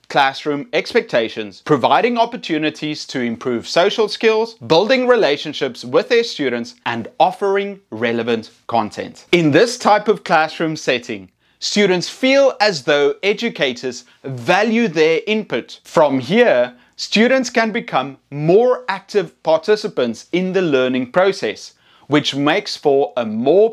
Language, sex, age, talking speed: English, male, 30-49, 120 wpm